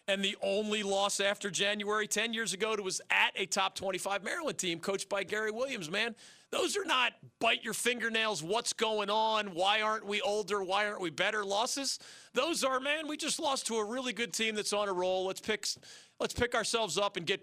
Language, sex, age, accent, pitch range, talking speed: English, male, 40-59, American, 160-220 Hz, 215 wpm